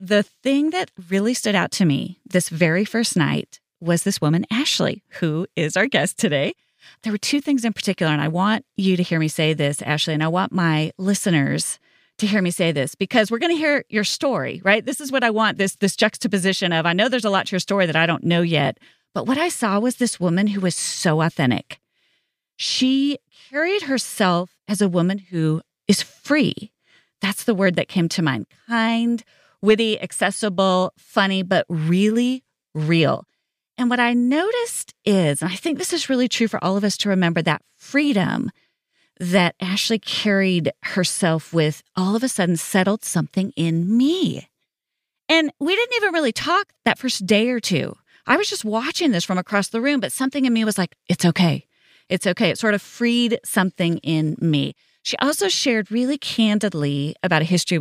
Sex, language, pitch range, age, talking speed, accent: female, English, 175-240 Hz, 40-59, 195 wpm, American